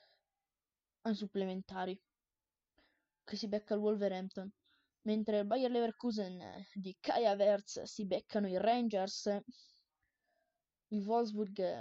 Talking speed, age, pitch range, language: 95 wpm, 20-39, 200-235 Hz, Italian